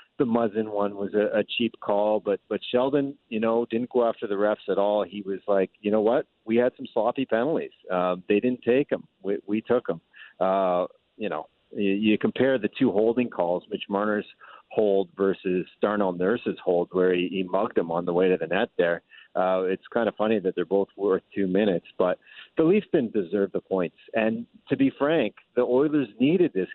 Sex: male